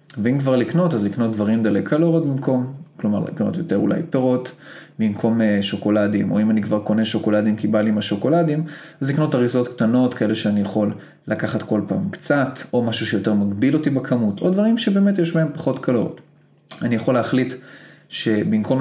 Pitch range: 110-155 Hz